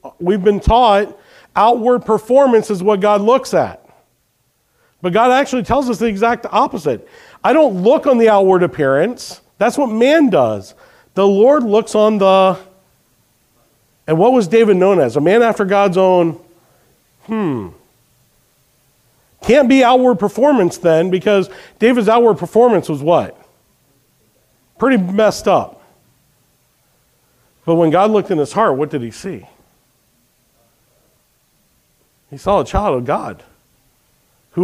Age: 50-69